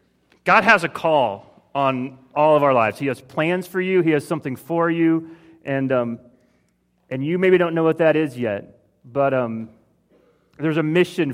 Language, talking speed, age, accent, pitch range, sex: English, 185 wpm, 30-49, American, 115-150 Hz, male